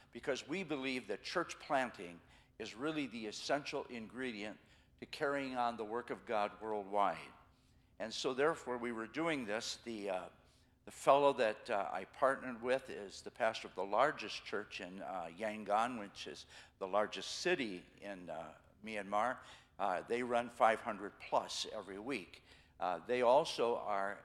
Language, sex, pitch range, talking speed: English, male, 105-135 Hz, 155 wpm